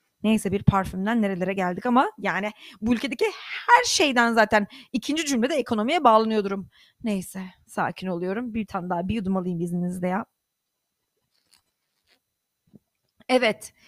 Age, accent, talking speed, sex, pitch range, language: 30-49, native, 125 wpm, female, 205-255 Hz, Turkish